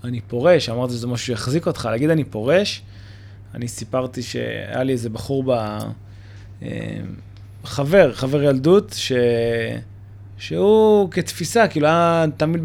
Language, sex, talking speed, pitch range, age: Hebrew, male, 125 wpm, 105-150 Hz, 20-39